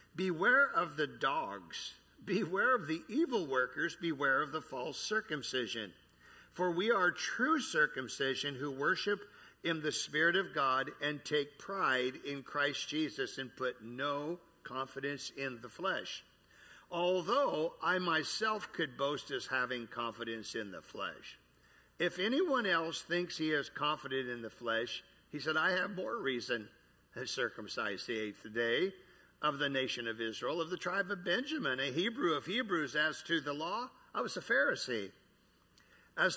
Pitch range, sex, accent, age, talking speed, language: 125-185 Hz, male, American, 50-69, 155 wpm, English